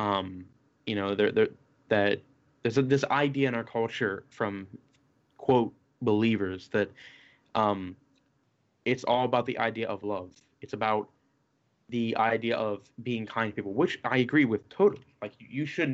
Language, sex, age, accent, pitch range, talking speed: English, male, 20-39, American, 110-135 Hz, 155 wpm